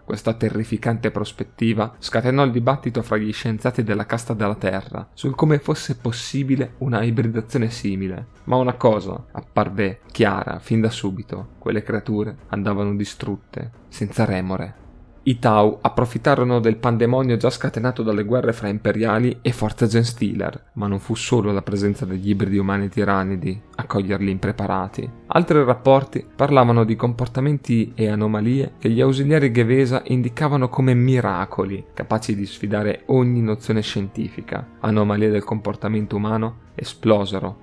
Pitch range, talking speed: 105-125 Hz, 135 wpm